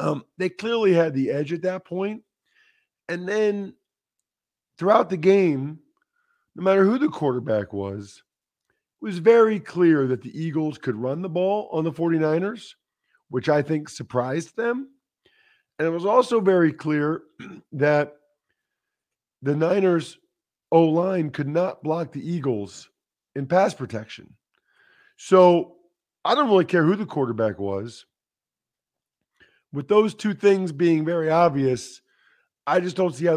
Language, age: English, 50-69